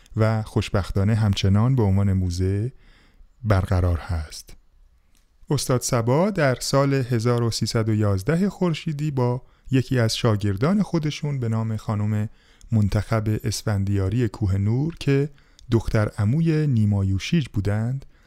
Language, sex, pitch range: Persian, male, 100-140 Hz